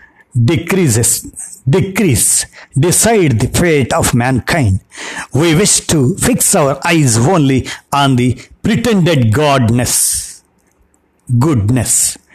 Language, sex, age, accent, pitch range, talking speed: Telugu, male, 60-79, native, 115-150 Hz, 90 wpm